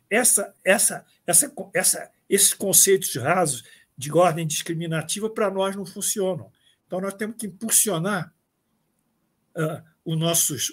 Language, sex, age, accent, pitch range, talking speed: Portuguese, male, 60-79, Brazilian, 150-190 Hz, 130 wpm